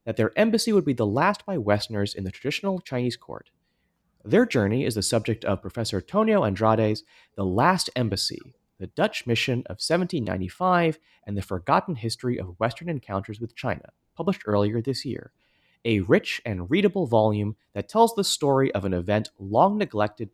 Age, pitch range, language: 30-49, 110-170 Hz, English